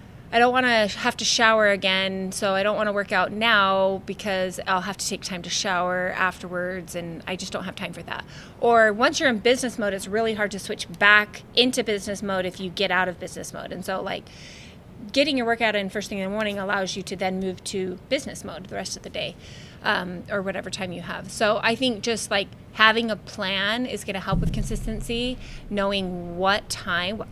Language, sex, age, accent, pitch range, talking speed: English, female, 20-39, American, 185-215 Hz, 225 wpm